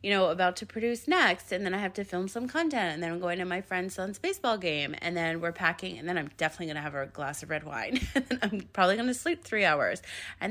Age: 30-49